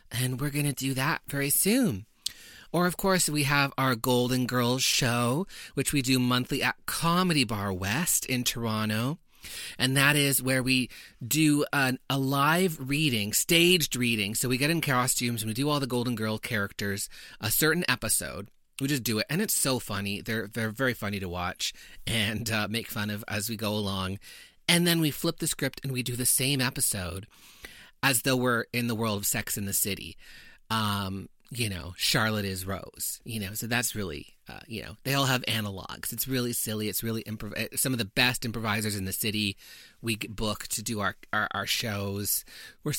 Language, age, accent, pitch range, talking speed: English, 30-49, American, 110-150 Hz, 195 wpm